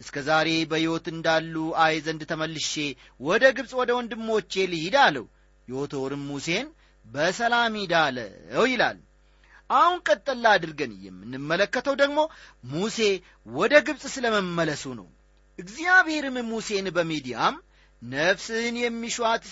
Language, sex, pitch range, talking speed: Amharic, male, 155-220 Hz, 95 wpm